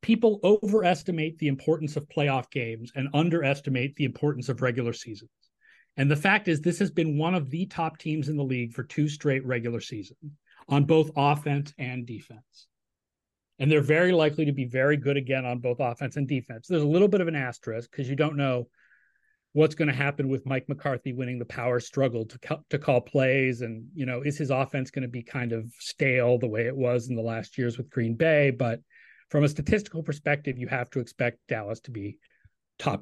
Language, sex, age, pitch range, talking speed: English, male, 30-49, 125-155 Hz, 210 wpm